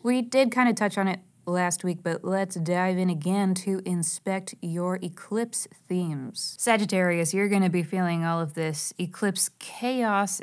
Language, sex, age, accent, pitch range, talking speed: English, female, 20-39, American, 165-205 Hz, 175 wpm